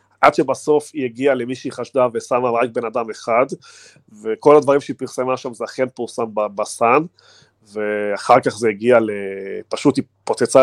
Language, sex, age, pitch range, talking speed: Hebrew, male, 30-49, 110-140 Hz, 165 wpm